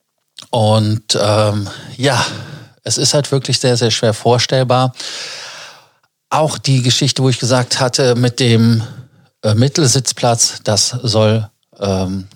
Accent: German